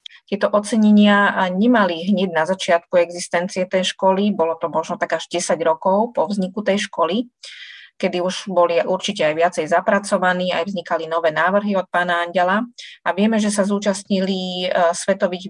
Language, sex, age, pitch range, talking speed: Slovak, female, 30-49, 175-205 Hz, 155 wpm